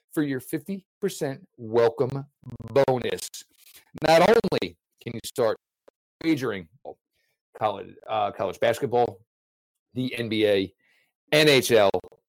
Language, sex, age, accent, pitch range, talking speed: English, male, 40-59, American, 115-165 Hz, 90 wpm